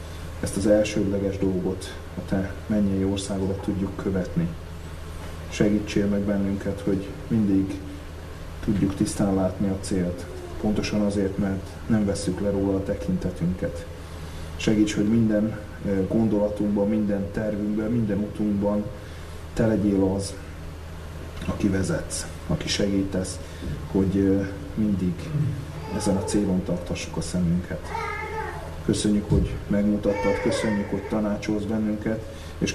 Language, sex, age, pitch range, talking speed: Hungarian, male, 30-49, 85-100 Hz, 110 wpm